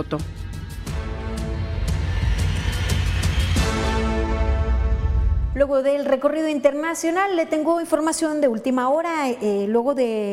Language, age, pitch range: Spanish, 40-59, 200-255 Hz